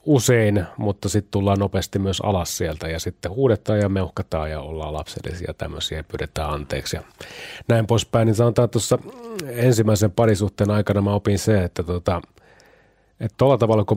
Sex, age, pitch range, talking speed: male, 30-49, 95-120 Hz, 160 wpm